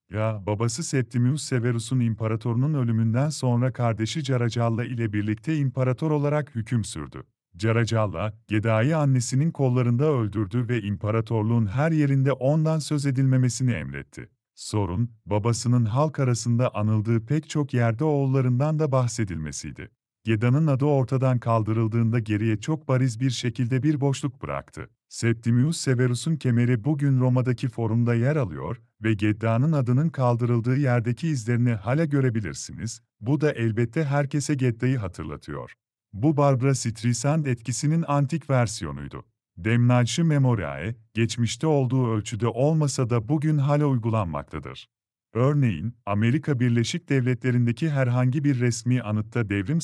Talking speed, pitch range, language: 120 wpm, 115-140 Hz, Polish